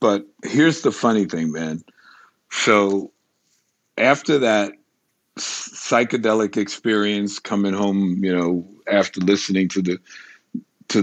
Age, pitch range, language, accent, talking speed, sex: 50-69, 95-105 Hz, English, American, 115 wpm, male